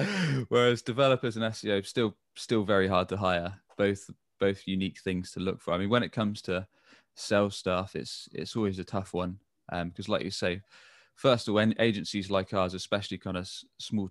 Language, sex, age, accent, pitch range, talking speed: English, male, 20-39, British, 95-110 Hz, 205 wpm